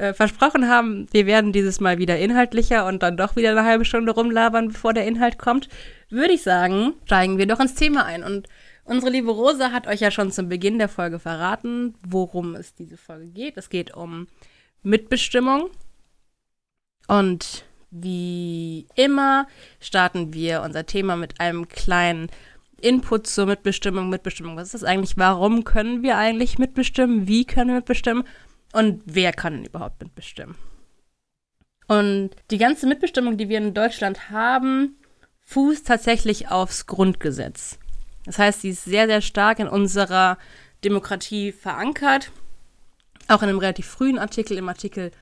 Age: 20-39